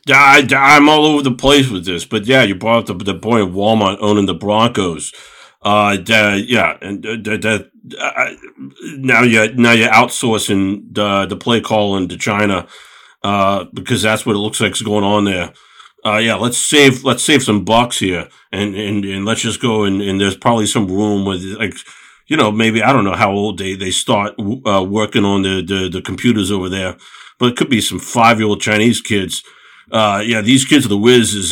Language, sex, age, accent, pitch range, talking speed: English, male, 50-69, American, 100-120 Hz, 210 wpm